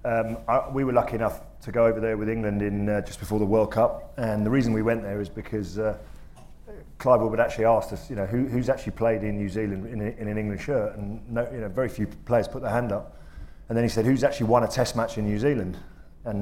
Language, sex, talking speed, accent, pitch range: English, male, 240 wpm, British, 105-120 Hz